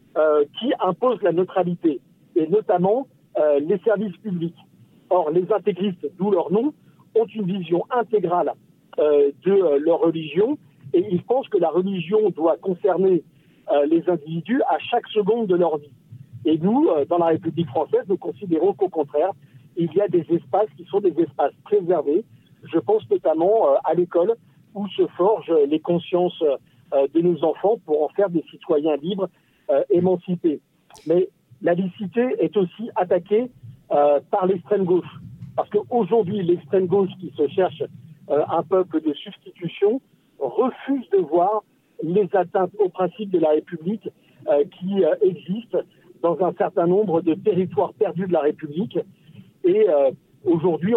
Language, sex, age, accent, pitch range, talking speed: French, male, 60-79, French, 160-210 Hz, 160 wpm